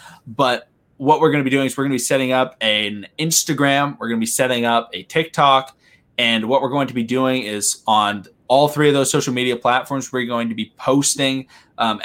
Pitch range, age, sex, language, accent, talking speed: 115-140 Hz, 20-39, male, English, American, 230 wpm